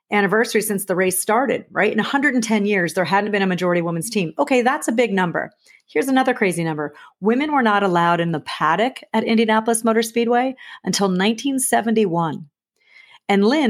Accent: American